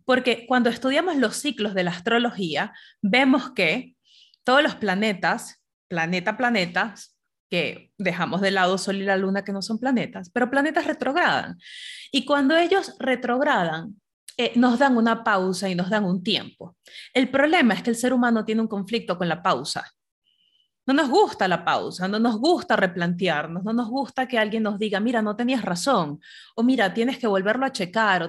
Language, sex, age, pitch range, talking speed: Spanish, female, 30-49, 190-255 Hz, 180 wpm